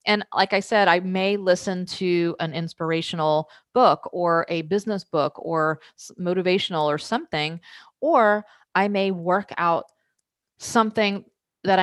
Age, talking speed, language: 30-49, 130 wpm, English